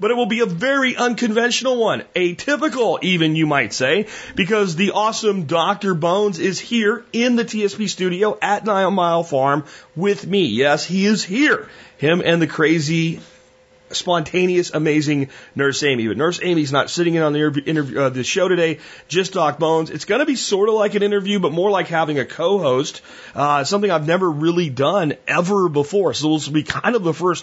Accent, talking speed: American, 195 wpm